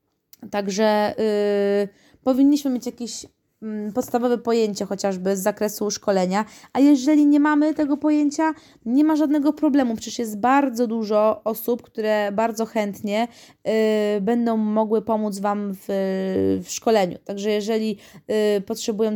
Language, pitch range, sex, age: Polish, 210-240 Hz, female, 20-39